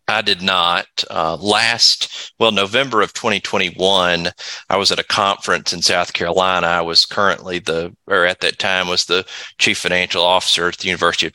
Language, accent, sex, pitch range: English, American, male, 90-100 Hz